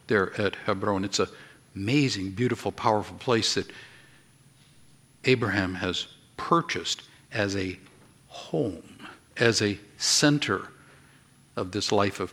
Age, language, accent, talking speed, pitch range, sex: 60-79, English, American, 110 wpm, 105-145 Hz, male